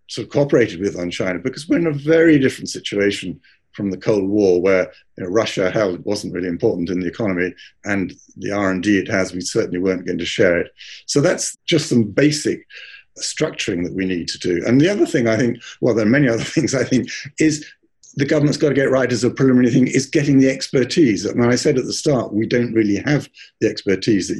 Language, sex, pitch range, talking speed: English, male, 100-140 Hz, 235 wpm